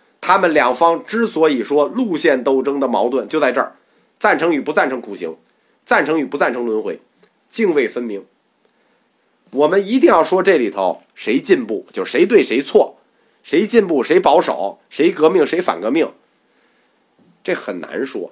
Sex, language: male, Chinese